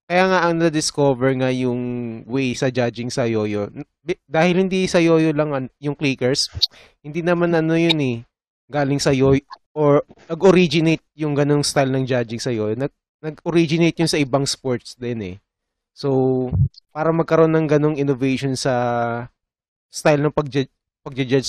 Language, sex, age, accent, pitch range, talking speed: Filipino, male, 20-39, native, 120-150 Hz, 145 wpm